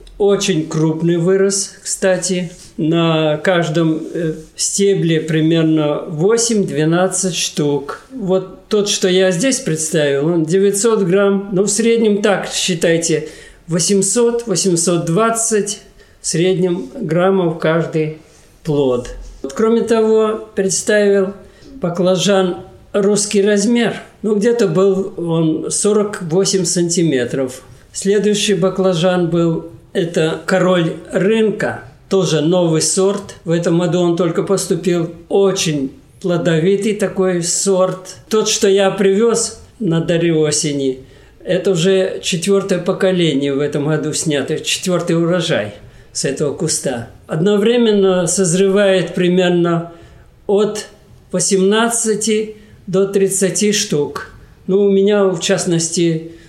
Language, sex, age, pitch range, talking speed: Russian, male, 50-69, 165-200 Hz, 100 wpm